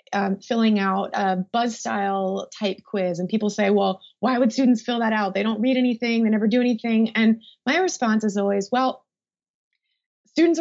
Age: 20-39